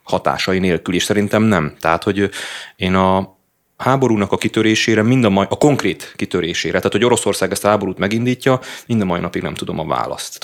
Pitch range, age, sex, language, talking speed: 95-115 Hz, 30-49, male, Hungarian, 195 wpm